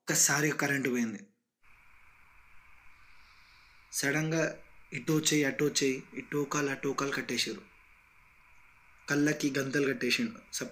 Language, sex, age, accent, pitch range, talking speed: Telugu, male, 20-39, native, 135-170 Hz, 85 wpm